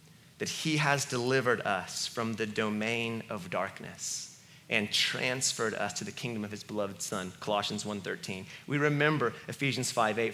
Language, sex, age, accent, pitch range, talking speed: English, male, 30-49, American, 125-170 Hz, 150 wpm